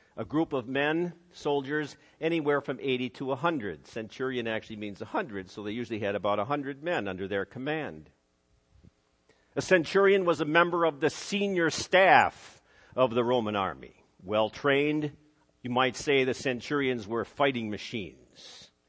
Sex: male